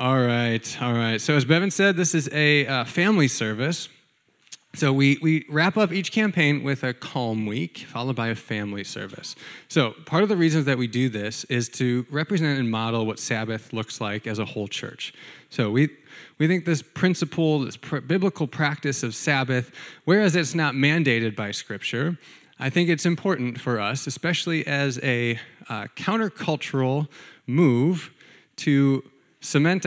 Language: English